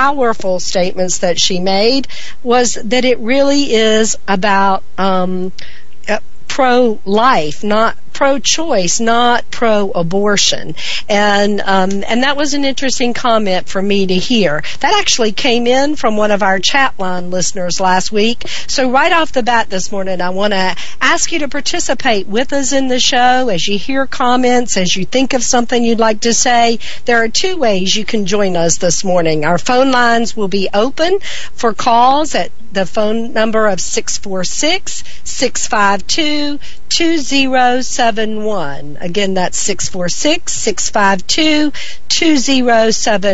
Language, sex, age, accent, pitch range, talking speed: English, female, 50-69, American, 200-265 Hz, 140 wpm